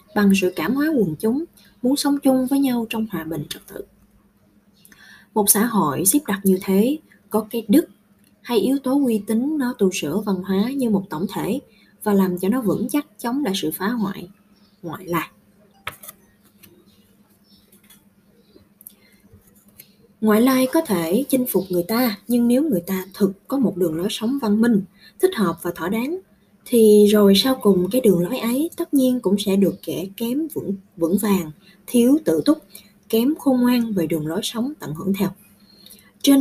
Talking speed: 180 wpm